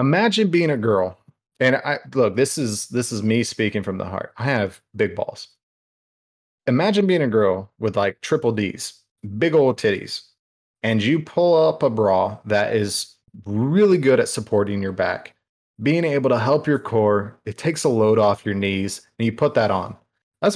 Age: 30-49